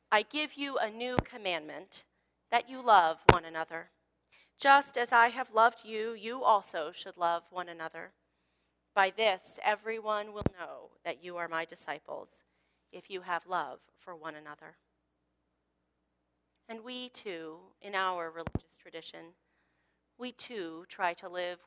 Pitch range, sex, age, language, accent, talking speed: 160-225 Hz, female, 30-49, English, American, 145 wpm